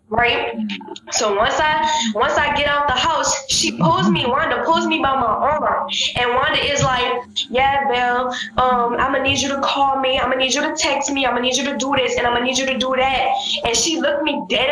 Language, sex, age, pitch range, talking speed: English, female, 10-29, 245-305 Hz, 245 wpm